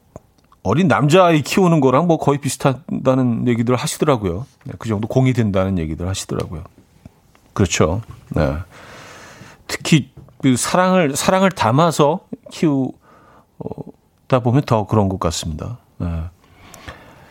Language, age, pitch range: Korean, 40-59, 110-160 Hz